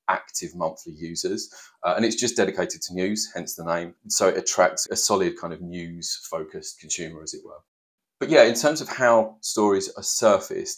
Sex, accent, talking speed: male, British, 195 wpm